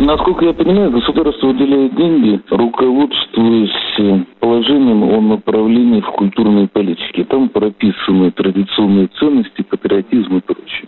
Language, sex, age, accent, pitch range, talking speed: Russian, male, 50-69, native, 95-125 Hz, 110 wpm